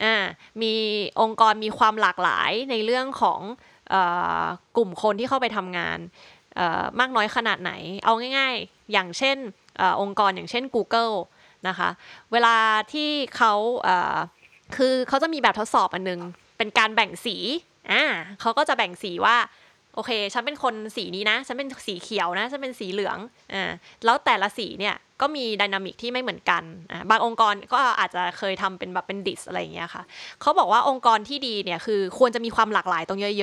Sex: female